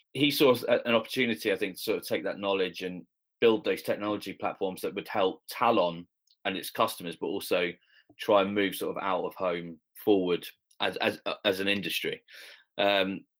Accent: British